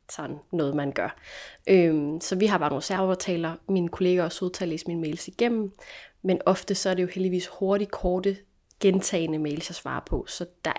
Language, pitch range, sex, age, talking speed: Danish, 175-205 Hz, female, 20-39, 200 wpm